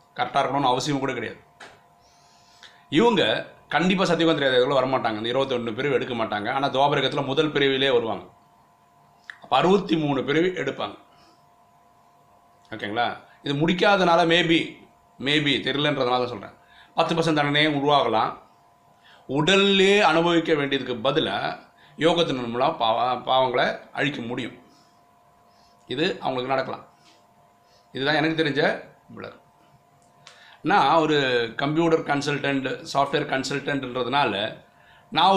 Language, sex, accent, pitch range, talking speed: Tamil, male, native, 125-160 Hz, 100 wpm